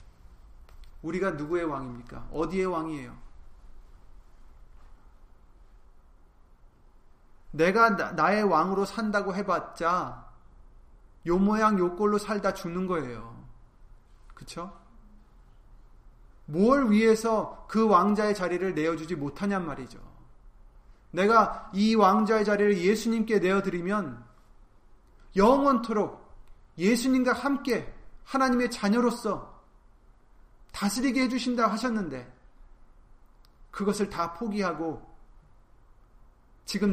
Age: 30-49